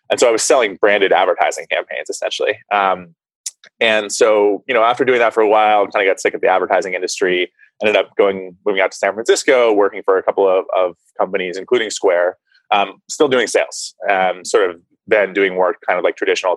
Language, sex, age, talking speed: English, male, 20-39, 215 wpm